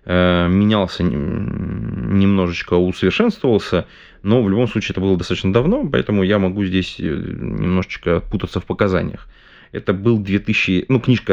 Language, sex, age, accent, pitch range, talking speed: Russian, male, 20-39, native, 90-115 Hz, 125 wpm